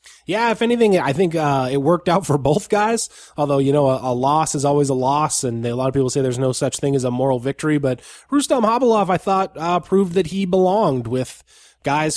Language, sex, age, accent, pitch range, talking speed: English, male, 20-39, American, 135-165 Hz, 240 wpm